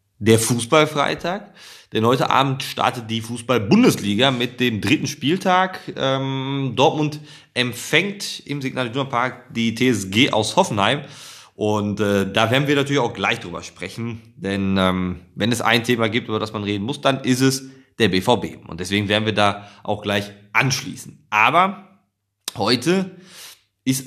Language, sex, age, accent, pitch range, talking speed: German, male, 30-49, German, 110-150 Hz, 150 wpm